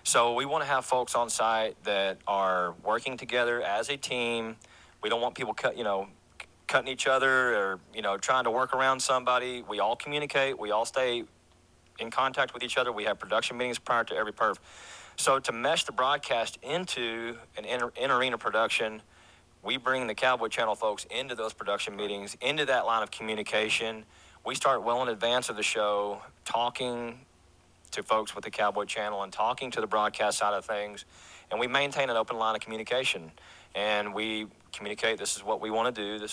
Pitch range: 105-125 Hz